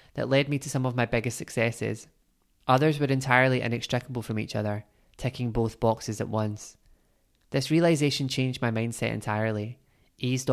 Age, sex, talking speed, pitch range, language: 20-39, male, 160 wpm, 115-135 Hz, English